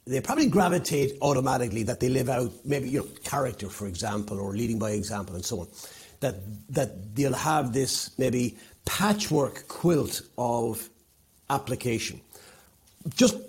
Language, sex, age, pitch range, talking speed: English, male, 50-69, 120-155 Hz, 140 wpm